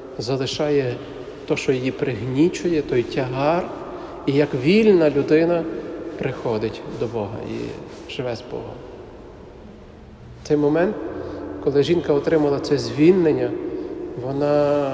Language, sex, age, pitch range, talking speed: Ukrainian, male, 40-59, 135-180 Hz, 110 wpm